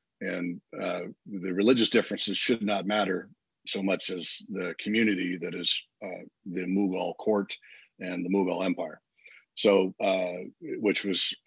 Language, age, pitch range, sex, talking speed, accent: English, 40-59, 90-105 Hz, male, 140 wpm, American